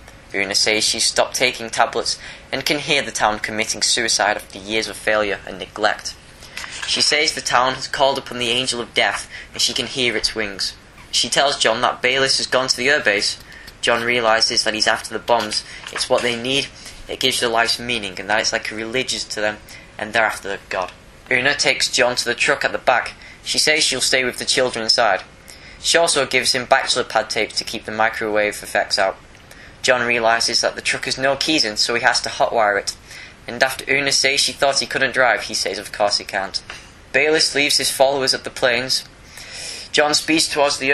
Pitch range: 110-130 Hz